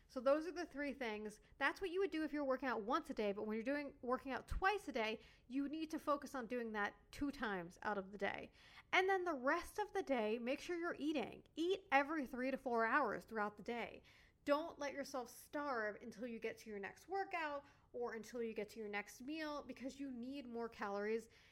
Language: English